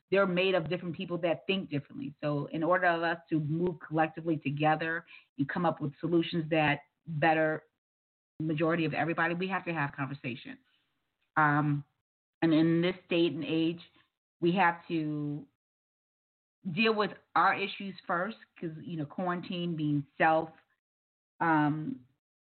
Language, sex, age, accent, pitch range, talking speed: English, female, 40-59, American, 155-180 Hz, 145 wpm